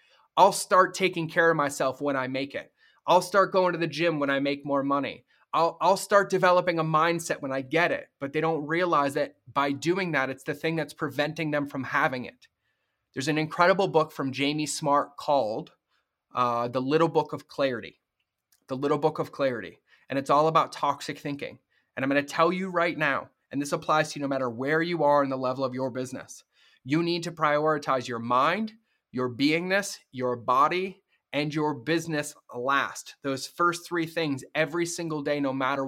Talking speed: 200 wpm